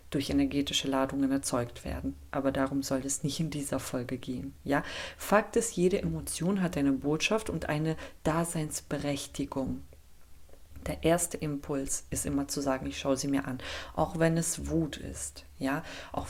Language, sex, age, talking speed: German, female, 40-59, 160 wpm